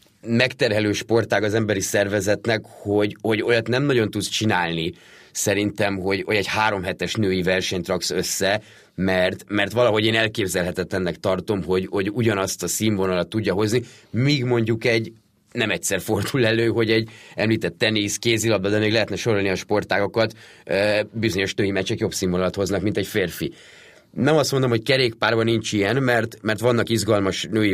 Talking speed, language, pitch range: 160 wpm, Hungarian, 100-120 Hz